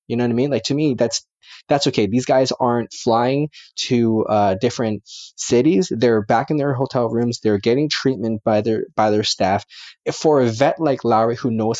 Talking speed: 205 wpm